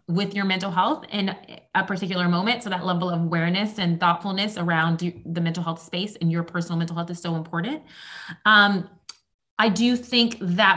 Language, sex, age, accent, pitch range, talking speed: English, female, 20-39, American, 175-205 Hz, 185 wpm